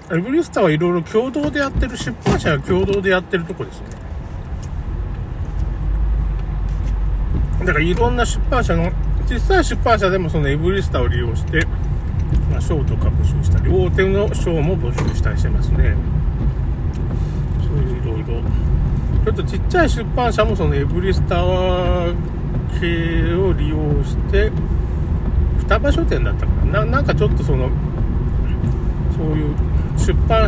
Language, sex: Japanese, male